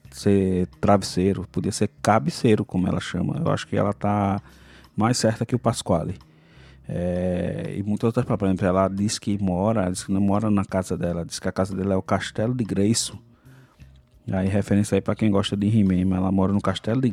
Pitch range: 95-110 Hz